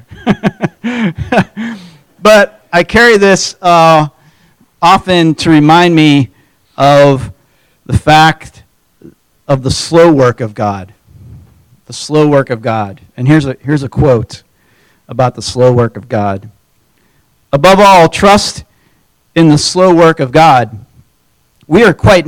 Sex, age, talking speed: male, 40-59, 125 wpm